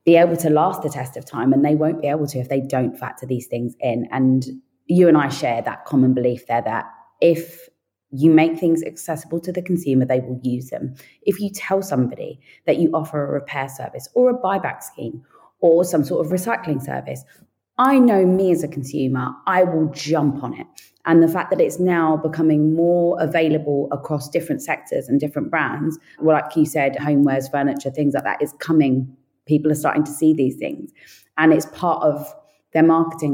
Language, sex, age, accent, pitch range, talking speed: English, female, 20-39, British, 140-170 Hz, 200 wpm